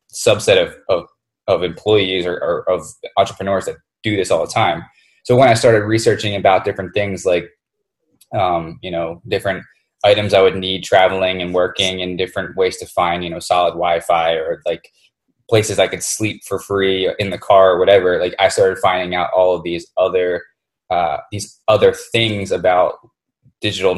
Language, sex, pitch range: English, male, 95-110 Hz